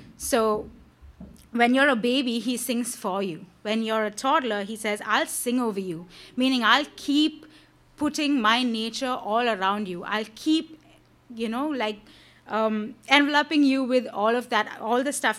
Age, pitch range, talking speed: 30-49, 210-260 Hz, 170 wpm